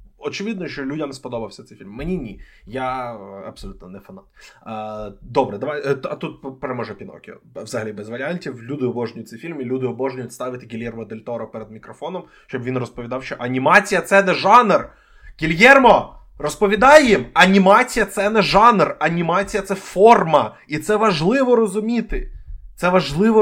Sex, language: male, Ukrainian